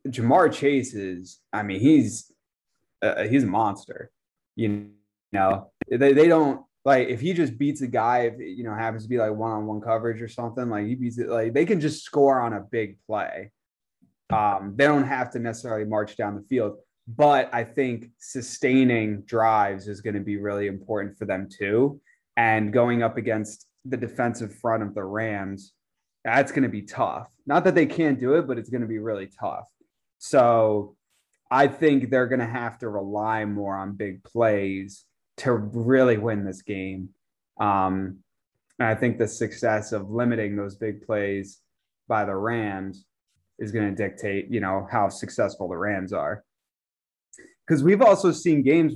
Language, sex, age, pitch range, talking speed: English, male, 20-39, 105-125 Hz, 180 wpm